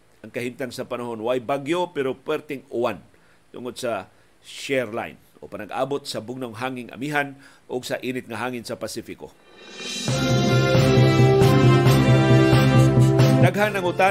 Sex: male